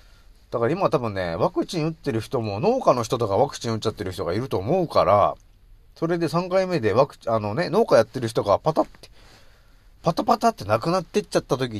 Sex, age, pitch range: male, 30-49, 95-150 Hz